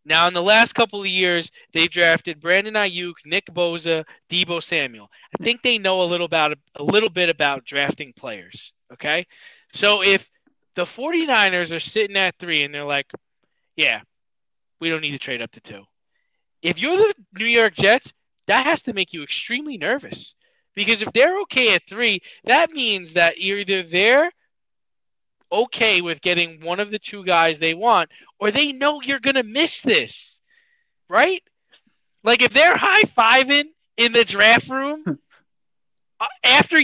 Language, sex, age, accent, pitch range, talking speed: English, male, 20-39, American, 175-270 Hz, 170 wpm